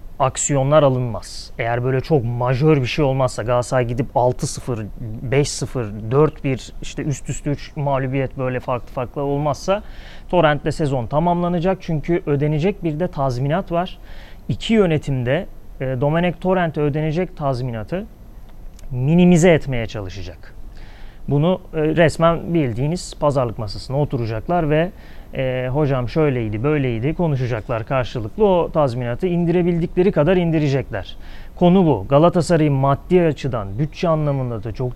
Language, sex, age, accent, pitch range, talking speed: Turkish, male, 30-49, native, 125-160 Hz, 120 wpm